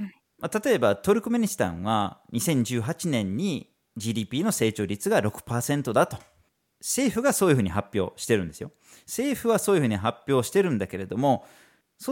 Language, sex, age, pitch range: Japanese, male, 40-59, 100-165 Hz